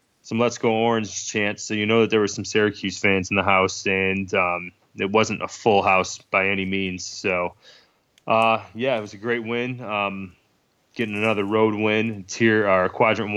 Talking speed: 200 wpm